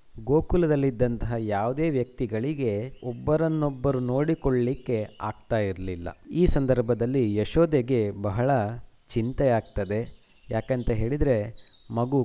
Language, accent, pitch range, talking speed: Kannada, native, 110-140 Hz, 80 wpm